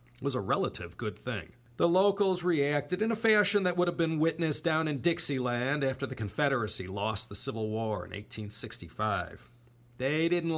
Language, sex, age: English, male, 40-59